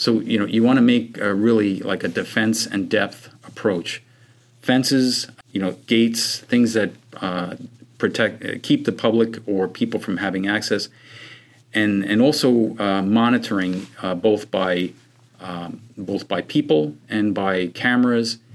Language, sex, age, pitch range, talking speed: English, male, 50-69, 95-115 Hz, 150 wpm